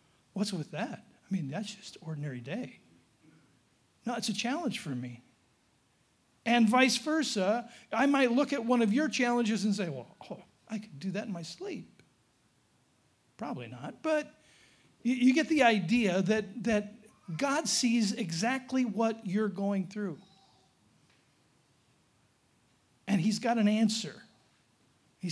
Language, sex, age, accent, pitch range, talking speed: English, male, 50-69, American, 175-235 Hz, 140 wpm